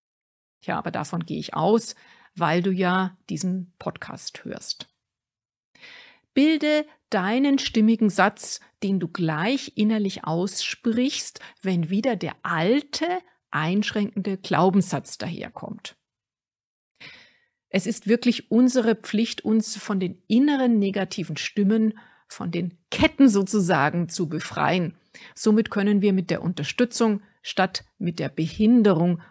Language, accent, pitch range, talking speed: German, German, 175-225 Hz, 115 wpm